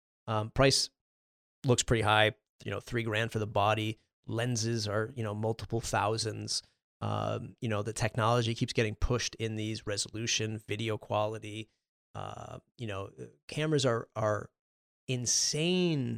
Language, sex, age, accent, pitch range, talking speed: English, male, 30-49, American, 105-120 Hz, 140 wpm